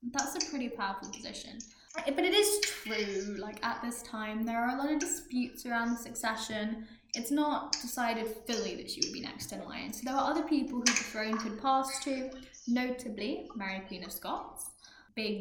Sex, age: female, 10-29